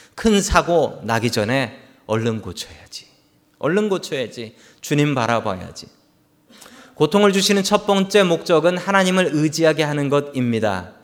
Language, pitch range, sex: Korean, 130-200 Hz, male